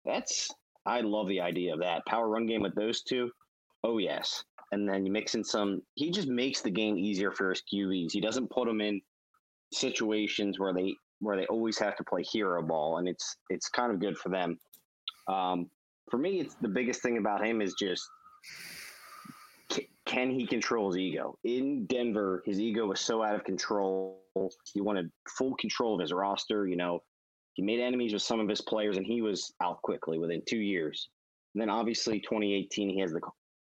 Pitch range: 95-115 Hz